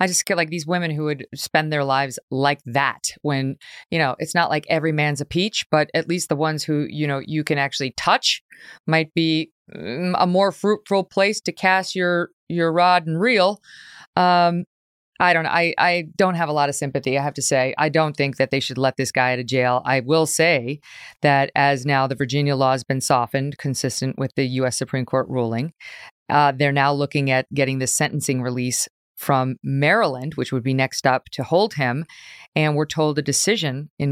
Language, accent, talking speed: English, American, 210 wpm